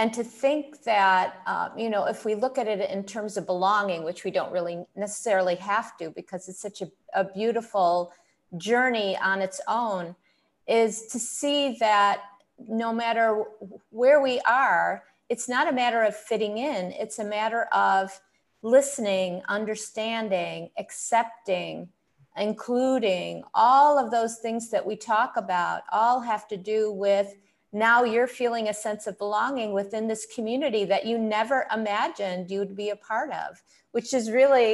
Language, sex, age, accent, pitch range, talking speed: English, female, 50-69, American, 195-235 Hz, 160 wpm